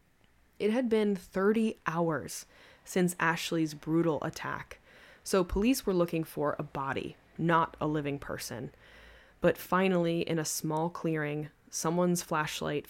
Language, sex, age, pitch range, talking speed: English, female, 20-39, 150-175 Hz, 130 wpm